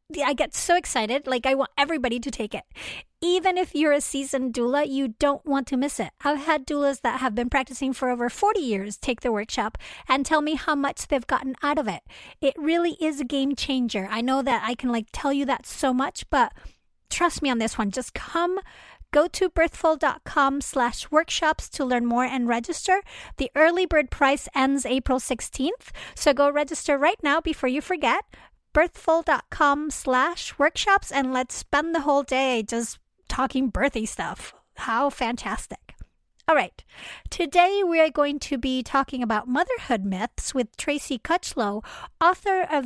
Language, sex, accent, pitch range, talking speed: English, female, American, 250-310 Hz, 180 wpm